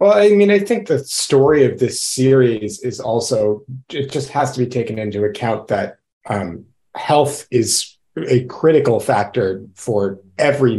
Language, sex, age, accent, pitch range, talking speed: English, male, 30-49, American, 105-130 Hz, 160 wpm